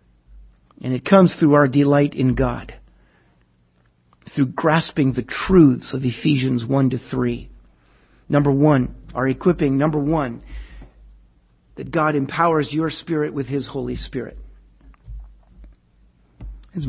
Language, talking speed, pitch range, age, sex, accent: English, 115 wpm, 125-195 Hz, 50-69, male, American